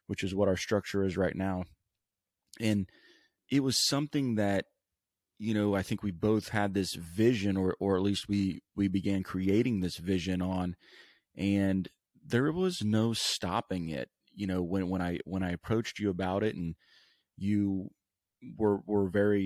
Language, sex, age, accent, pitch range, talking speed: English, male, 30-49, American, 95-110 Hz, 170 wpm